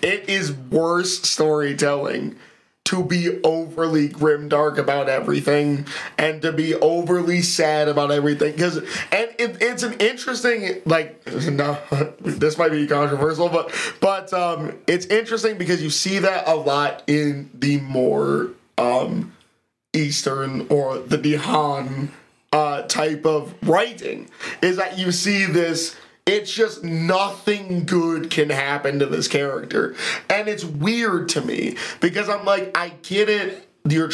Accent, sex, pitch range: American, male, 150-185 Hz